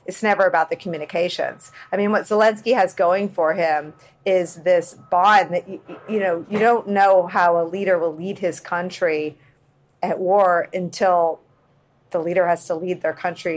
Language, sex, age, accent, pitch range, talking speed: English, female, 40-59, American, 165-195 Hz, 175 wpm